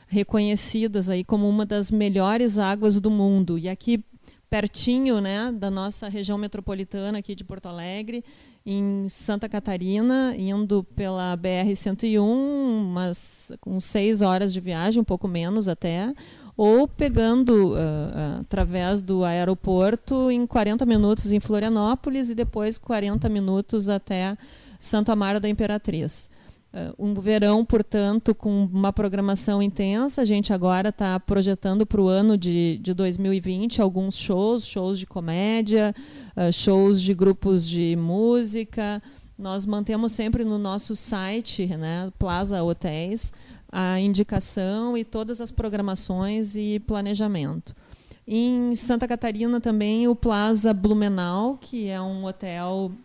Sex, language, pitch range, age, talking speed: female, Portuguese, 190-220 Hz, 40-59, 130 wpm